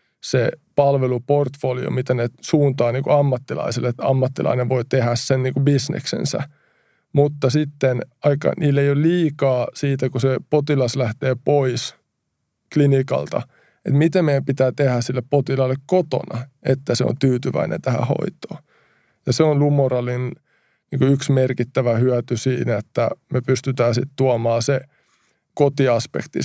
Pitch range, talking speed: 125-145 Hz, 130 wpm